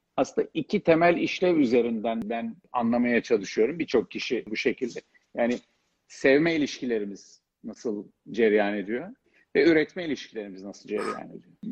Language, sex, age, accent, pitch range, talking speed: Turkish, male, 50-69, native, 110-130 Hz, 125 wpm